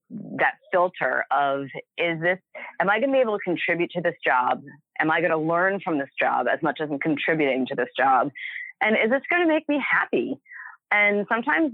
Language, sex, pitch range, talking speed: English, female, 150-205 Hz, 215 wpm